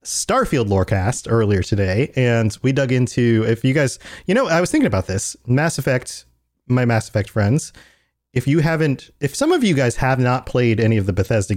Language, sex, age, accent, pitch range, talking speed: English, male, 30-49, American, 105-130 Hz, 205 wpm